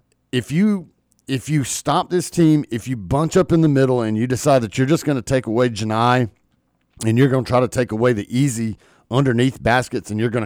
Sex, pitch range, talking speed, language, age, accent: male, 115-145 Hz, 230 wpm, English, 40-59, American